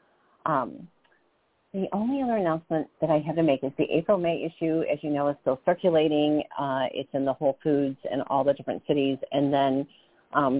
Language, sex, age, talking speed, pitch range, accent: English, female, 40-59, 190 wpm, 145-200 Hz, American